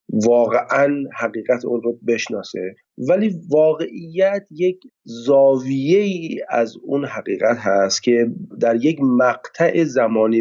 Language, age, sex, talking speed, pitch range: Persian, 40-59, male, 105 wpm, 115-160 Hz